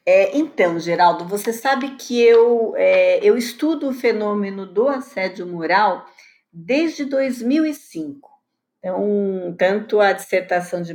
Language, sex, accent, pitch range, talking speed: Portuguese, female, Brazilian, 185-280 Hz, 120 wpm